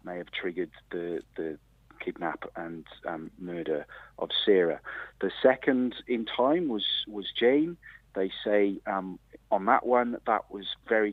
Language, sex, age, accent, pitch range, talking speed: English, male, 40-59, British, 90-125 Hz, 145 wpm